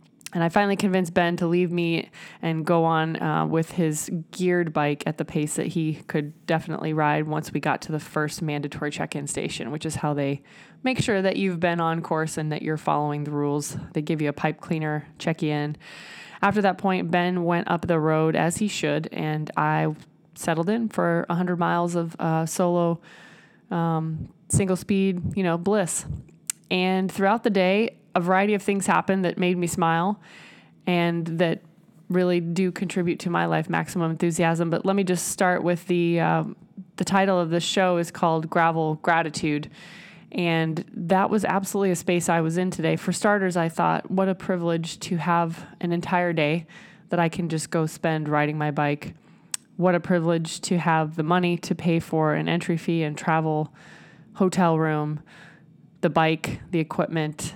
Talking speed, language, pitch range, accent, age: 185 wpm, English, 160-185 Hz, American, 20-39